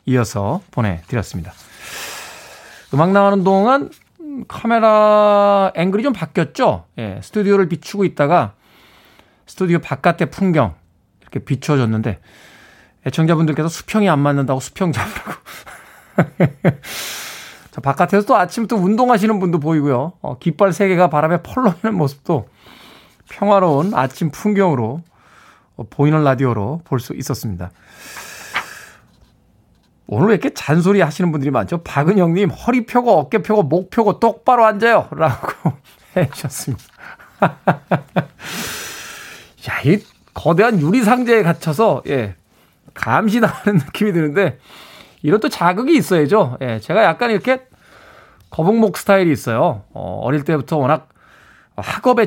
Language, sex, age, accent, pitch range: Korean, male, 20-39, native, 140-205 Hz